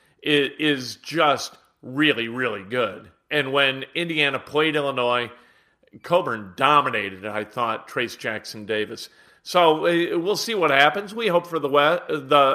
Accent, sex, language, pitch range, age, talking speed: American, male, English, 140-185 Hz, 40-59, 125 wpm